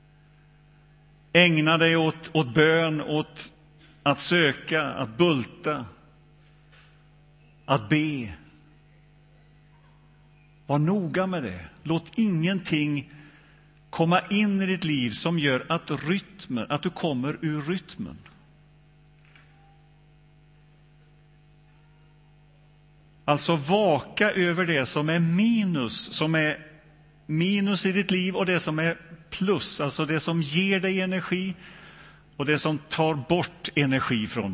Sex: male